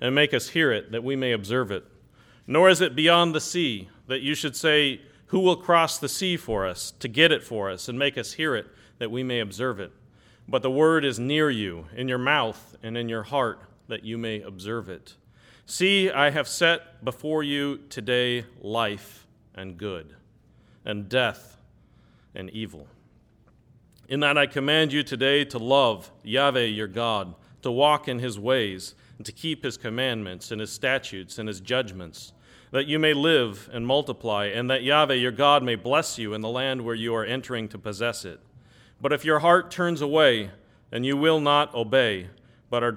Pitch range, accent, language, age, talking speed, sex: 110-145 Hz, American, English, 40-59, 190 wpm, male